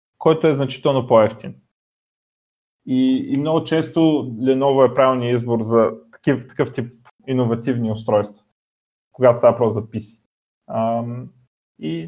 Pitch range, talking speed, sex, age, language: 110-135 Hz, 120 wpm, male, 20-39, Bulgarian